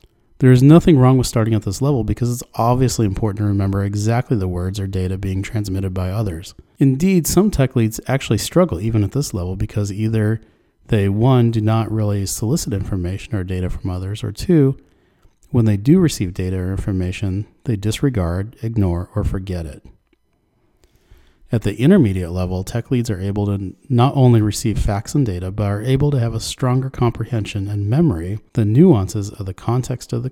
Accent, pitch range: American, 95-125 Hz